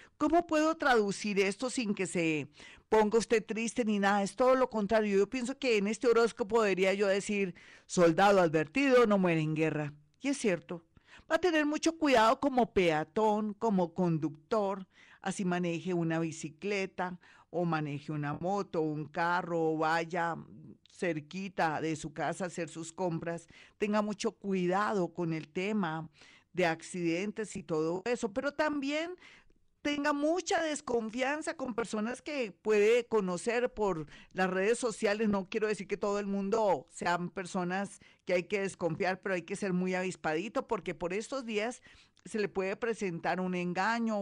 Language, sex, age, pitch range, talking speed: Spanish, female, 50-69, 175-225 Hz, 160 wpm